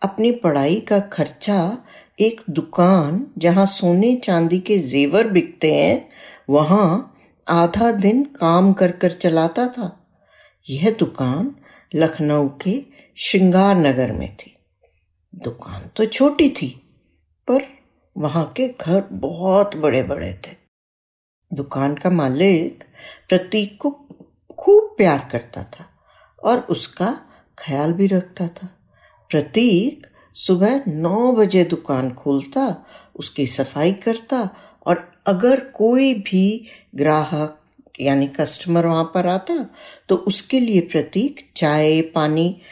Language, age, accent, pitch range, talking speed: Hindi, 60-79, native, 155-230 Hz, 115 wpm